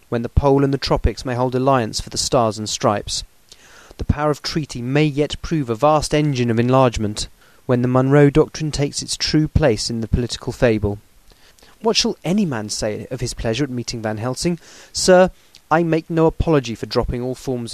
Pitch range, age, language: 110-150 Hz, 30-49, English